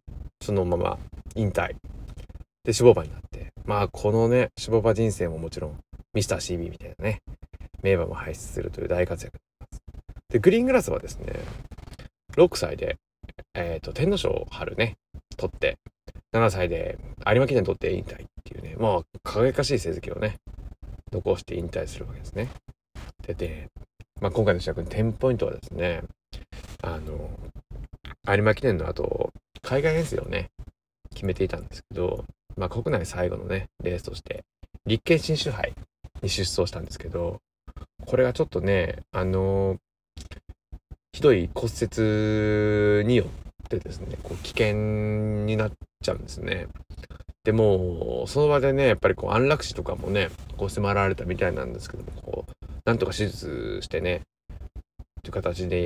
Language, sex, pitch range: Japanese, male, 85-110 Hz